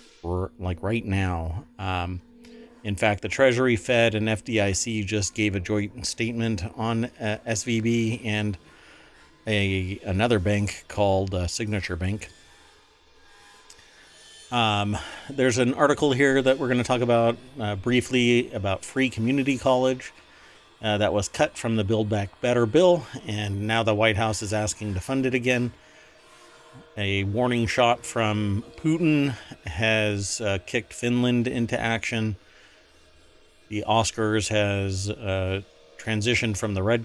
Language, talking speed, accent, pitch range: English, 135 wpm, American, 95-120 Hz